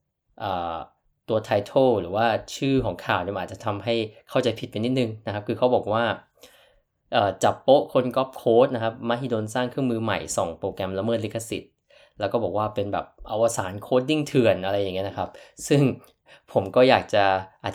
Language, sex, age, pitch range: Thai, male, 20-39, 100-125 Hz